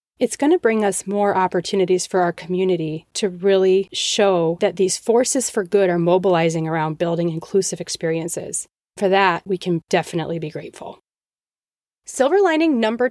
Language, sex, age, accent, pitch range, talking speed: English, female, 30-49, American, 185-240 Hz, 155 wpm